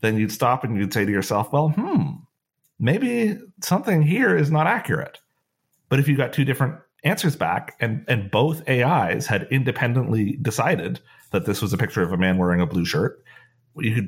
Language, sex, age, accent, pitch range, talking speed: English, male, 30-49, American, 105-140 Hz, 190 wpm